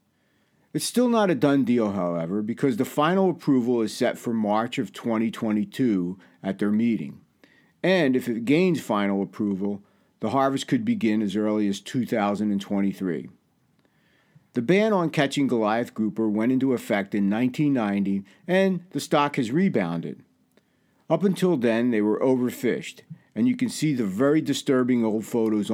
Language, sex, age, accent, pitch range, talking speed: English, male, 50-69, American, 105-150 Hz, 150 wpm